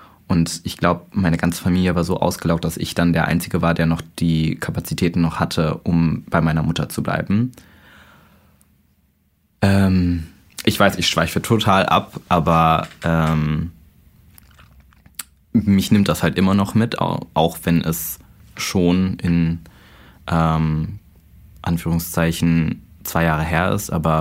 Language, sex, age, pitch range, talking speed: German, male, 20-39, 80-95 Hz, 135 wpm